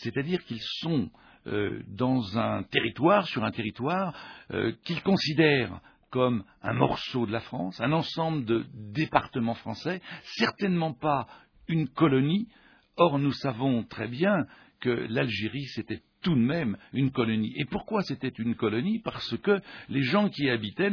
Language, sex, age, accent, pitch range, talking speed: French, male, 60-79, French, 120-170 Hz, 145 wpm